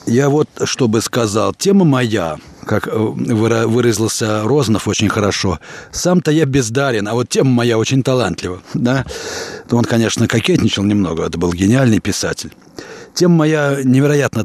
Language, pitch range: Russian, 110-155 Hz